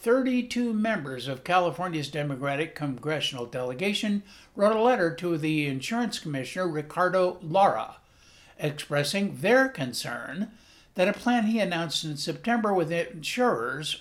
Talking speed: 120 wpm